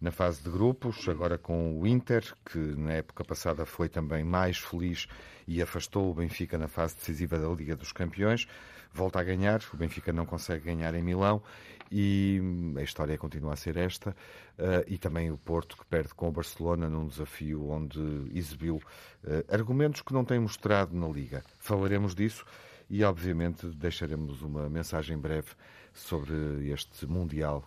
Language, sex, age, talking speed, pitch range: Portuguese, male, 50-69, 165 wpm, 80-100 Hz